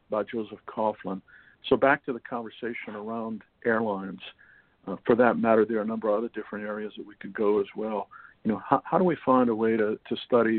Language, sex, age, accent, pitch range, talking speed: English, male, 50-69, American, 105-125 Hz, 225 wpm